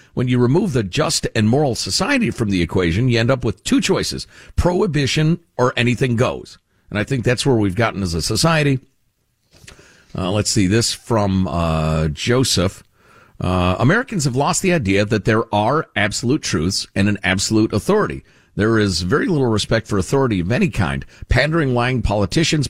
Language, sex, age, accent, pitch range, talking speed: English, male, 50-69, American, 100-145 Hz, 175 wpm